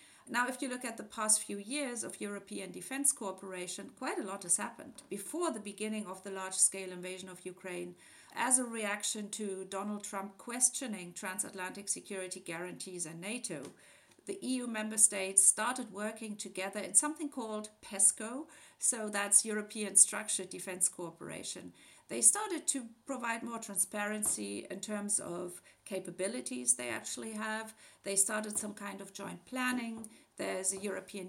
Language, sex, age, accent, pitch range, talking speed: English, female, 50-69, German, 190-230 Hz, 155 wpm